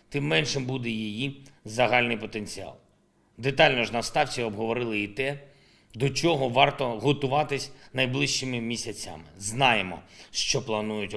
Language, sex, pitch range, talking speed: Ukrainian, male, 110-135 Hz, 115 wpm